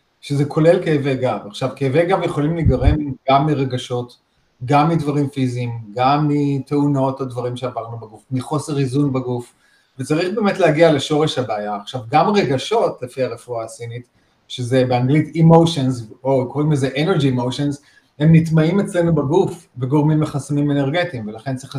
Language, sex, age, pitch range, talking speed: Hebrew, male, 30-49, 125-155 Hz, 140 wpm